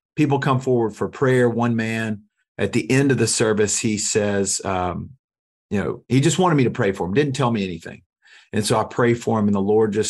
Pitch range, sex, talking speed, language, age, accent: 110-145 Hz, male, 240 wpm, English, 40-59, American